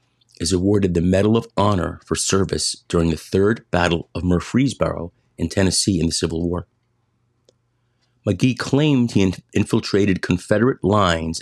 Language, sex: English, male